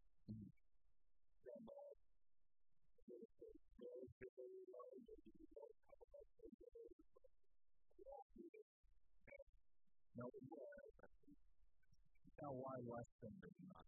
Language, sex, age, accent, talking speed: English, female, 40-59, American, 230 wpm